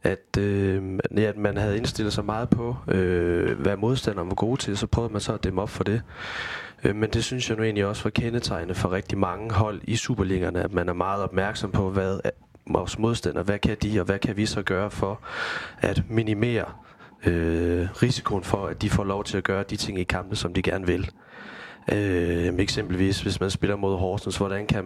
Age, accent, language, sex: 30-49, native, Danish, male